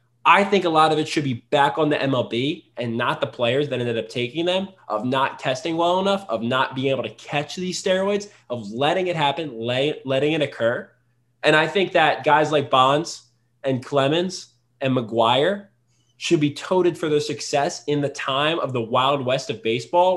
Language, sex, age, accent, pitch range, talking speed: English, male, 20-39, American, 120-155 Hz, 200 wpm